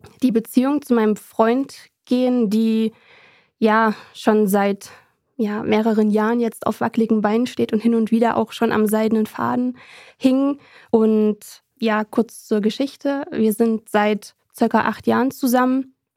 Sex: female